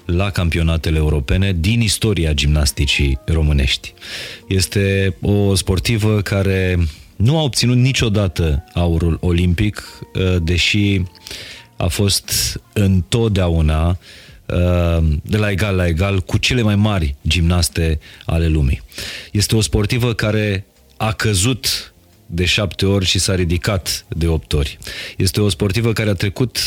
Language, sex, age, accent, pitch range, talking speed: Romanian, male, 30-49, native, 85-105 Hz, 120 wpm